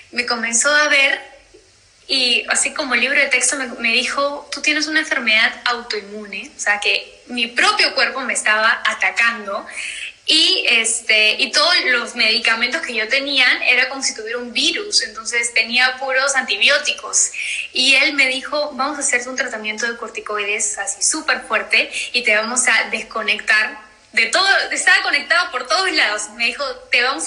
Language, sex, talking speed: Spanish, female, 165 wpm